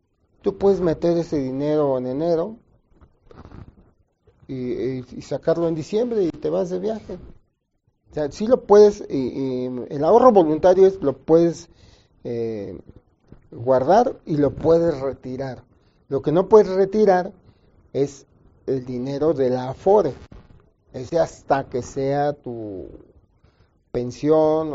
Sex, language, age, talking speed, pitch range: male, Spanish, 40-59, 130 wpm, 125-170 Hz